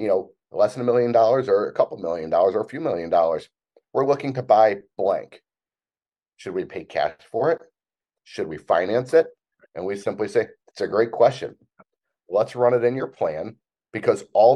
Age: 40-59